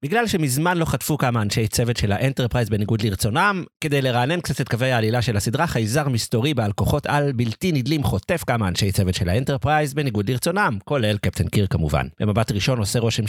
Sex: male